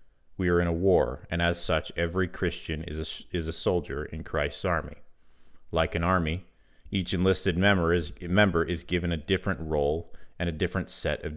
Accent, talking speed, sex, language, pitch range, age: American, 190 wpm, male, English, 80-90 Hz, 30-49